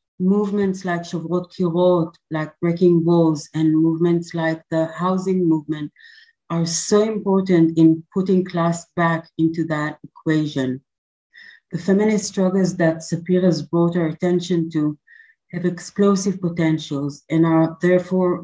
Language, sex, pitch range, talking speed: English, female, 160-185 Hz, 120 wpm